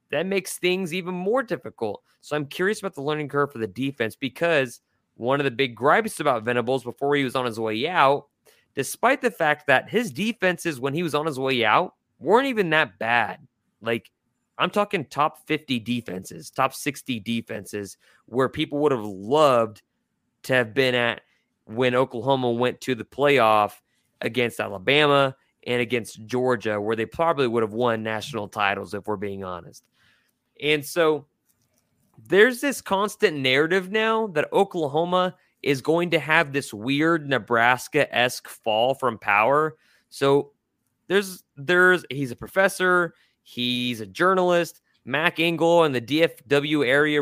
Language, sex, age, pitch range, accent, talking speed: English, male, 20-39, 125-170 Hz, American, 155 wpm